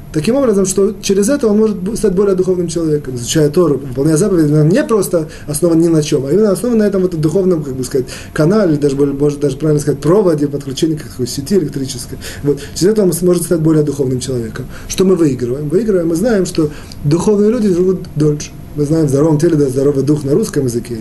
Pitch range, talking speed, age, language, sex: 140-180 Hz, 220 wpm, 20-39, Russian, male